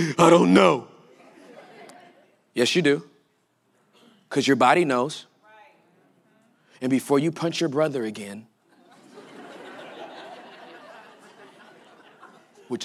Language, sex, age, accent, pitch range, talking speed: English, male, 30-49, American, 110-130 Hz, 85 wpm